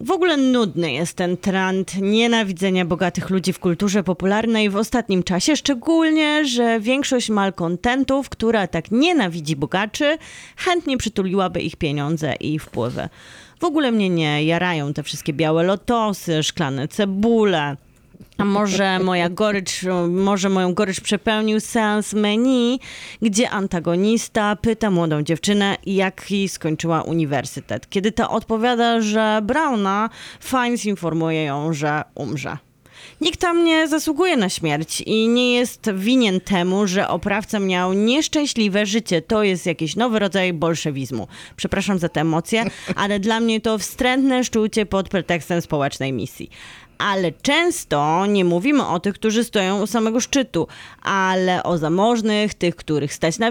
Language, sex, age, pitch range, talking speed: Polish, female, 30-49, 165-225 Hz, 140 wpm